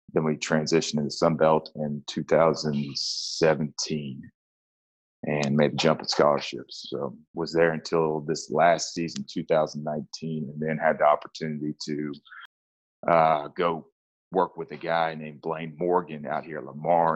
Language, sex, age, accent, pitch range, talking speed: English, male, 30-49, American, 75-80 Hz, 145 wpm